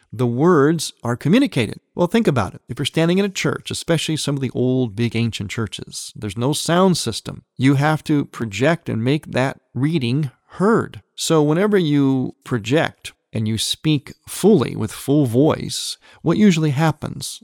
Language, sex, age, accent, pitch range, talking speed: English, male, 40-59, American, 115-155 Hz, 170 wpm